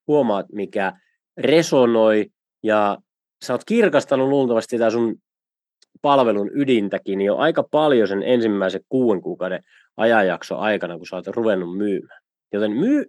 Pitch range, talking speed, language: 110-150 Hz, 130 wpm, Finnish